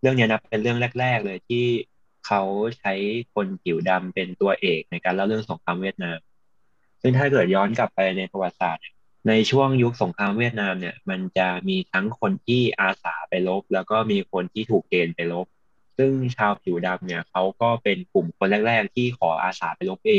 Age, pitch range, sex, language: 20-39, 95-120 Hz, male, Thai